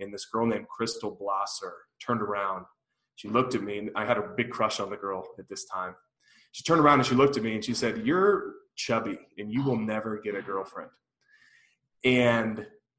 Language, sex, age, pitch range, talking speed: English, male, 20-39, 100-125 Hz, 210 wpm